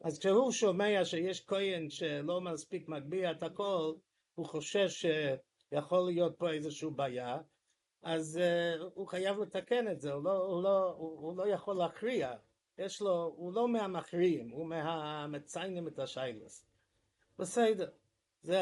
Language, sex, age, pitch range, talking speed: English, male, 50-69, 135-175 Hz, 135 wpm